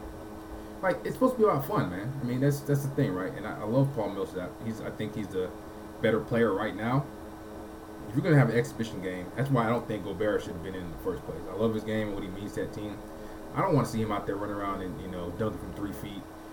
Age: 20-39